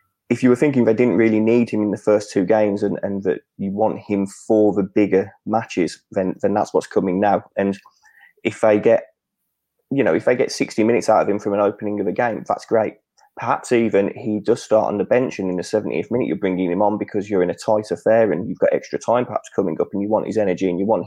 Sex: male